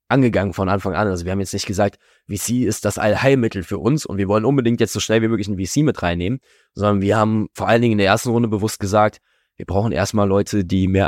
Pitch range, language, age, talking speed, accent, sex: 95-115 Hz, German, 20-39, 255 wpm, German, male